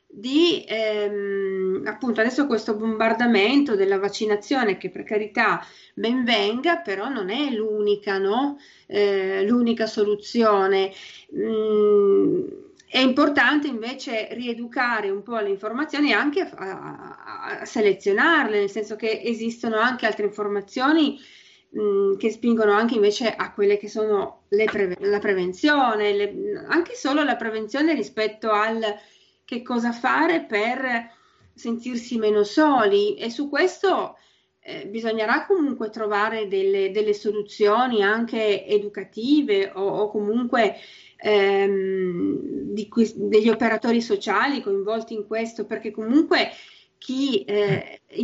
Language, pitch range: Italian, 205-265 Hz